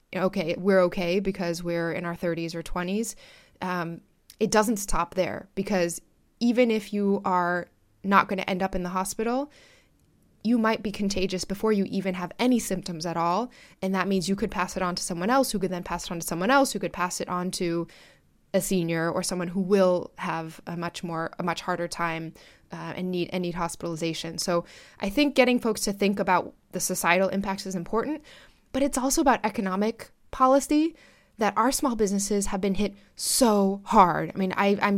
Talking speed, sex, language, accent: 200 wpm, female, English, American